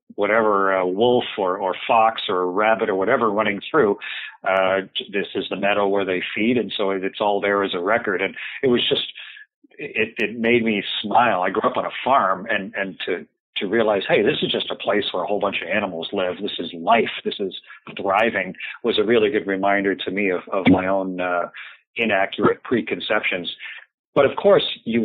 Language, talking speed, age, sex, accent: English, 205 wpm, 40-59, male, American